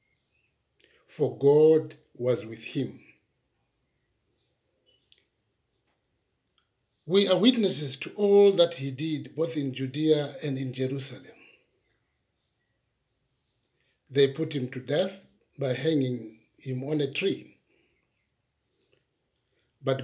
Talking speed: 95 wpm